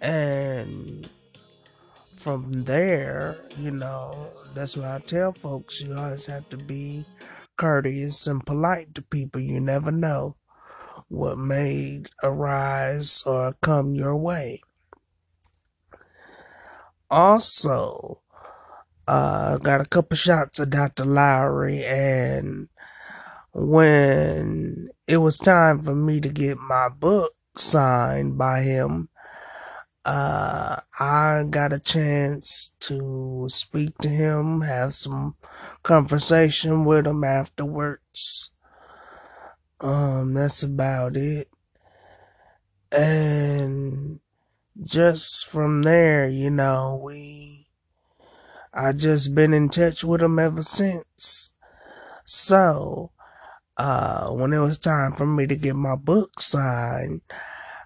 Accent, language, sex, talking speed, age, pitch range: American, English, male, 105 wpm, 20-39, 135-155 Hz